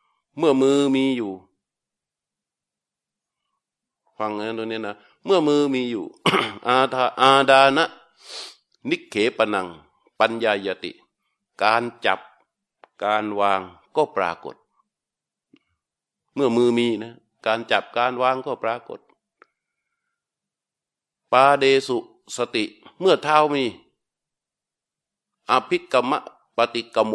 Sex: male